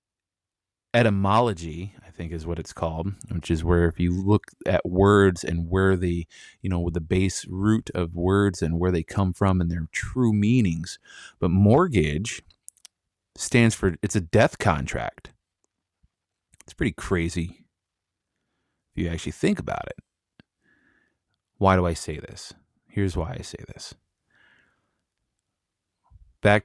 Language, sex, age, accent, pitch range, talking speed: English, male, 30-49, American, 85-105 Hz, 135 wpm